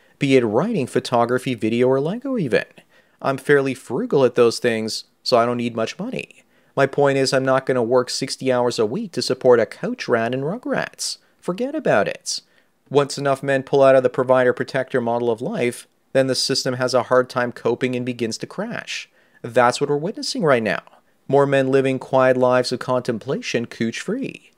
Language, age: English, 30-49